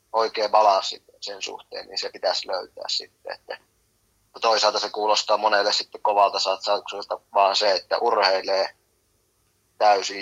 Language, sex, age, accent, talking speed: Finnish, male, 20-39, native, 125 wpm